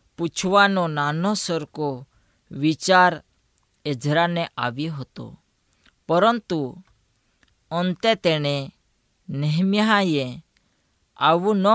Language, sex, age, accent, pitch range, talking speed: Gujarati, female, 20-39, native, 140-180 Hz, 50 wpm